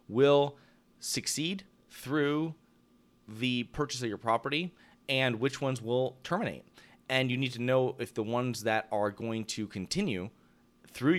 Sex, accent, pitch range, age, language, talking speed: male, American, 105-130 Hz, 30-49, English, 145 wpm